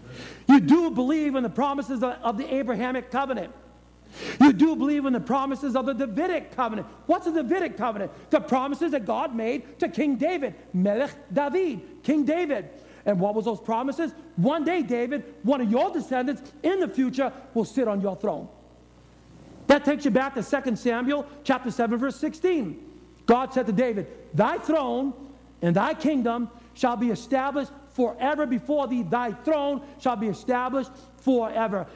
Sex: male